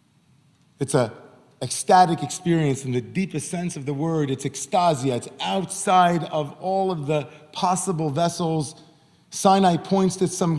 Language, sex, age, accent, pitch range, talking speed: English, male, 40-59, American, 130-155 Hz, 140 wpm